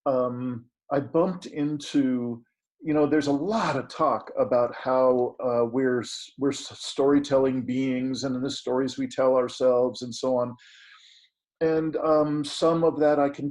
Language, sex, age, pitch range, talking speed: English, male, 50-69, 130-160 Hz, 155 wpm